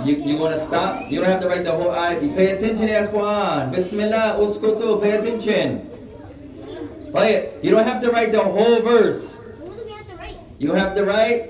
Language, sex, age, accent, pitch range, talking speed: English, male, 20-39, American, 175-220 Hz, 200 wpm